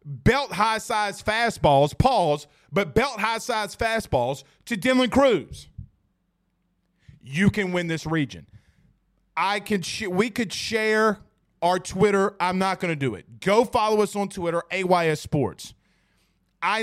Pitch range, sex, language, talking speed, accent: 160-205 Hz, male, English, 145 wpm, American